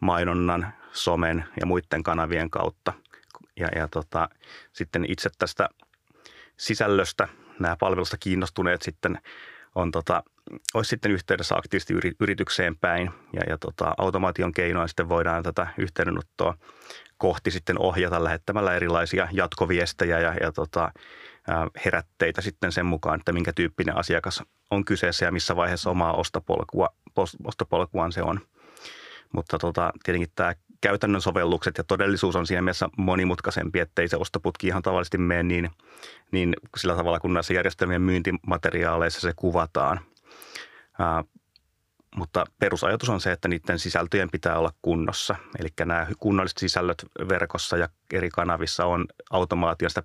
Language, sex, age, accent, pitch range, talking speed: Finnish, male, 30-49, native, 85-95 Hz, 125 wpm